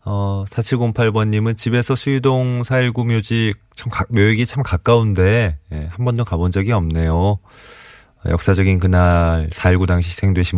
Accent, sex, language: native, male, Korean